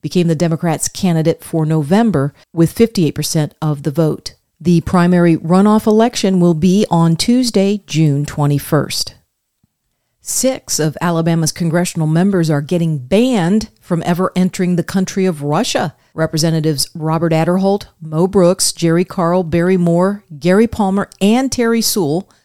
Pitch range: 160-200 Hz